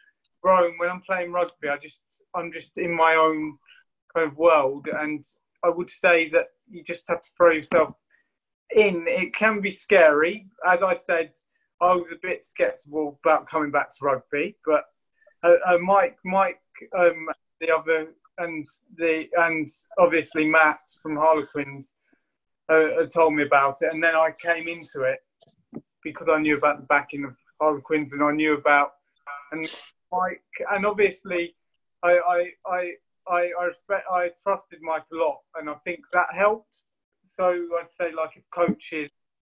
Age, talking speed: 30-49, 165 wpm